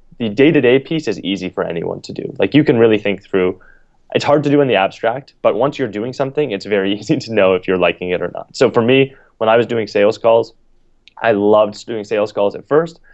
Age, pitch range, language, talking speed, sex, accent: 20-39, 95-115 Hz, English, 245 wpm, male, American